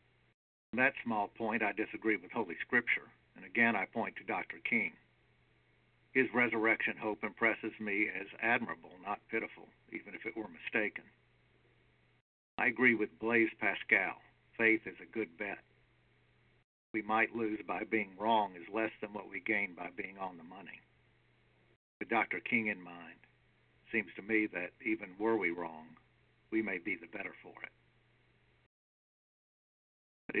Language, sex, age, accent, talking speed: English, male, 50-69, American, 160 wpm